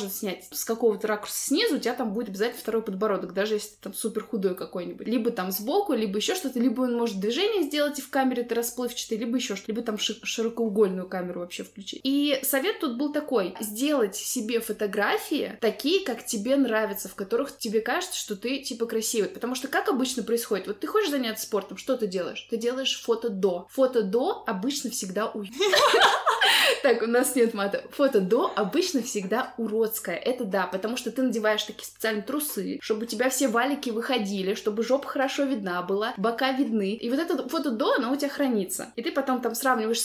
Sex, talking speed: female, 200 wpm